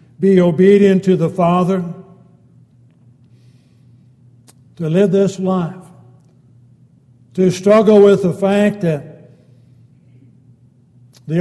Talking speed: 85 wpm